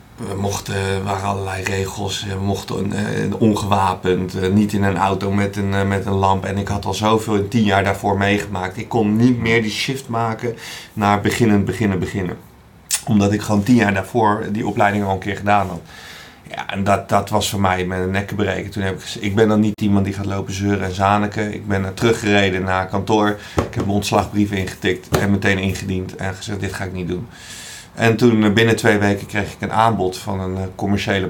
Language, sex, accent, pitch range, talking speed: Dutch, male, Dutch, 95-110 Hz, 205 wpm